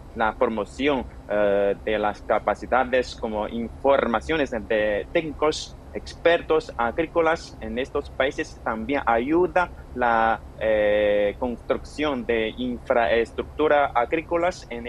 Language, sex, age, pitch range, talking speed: Spanish, male, 30-49, 110-135 Hz, 95 wpm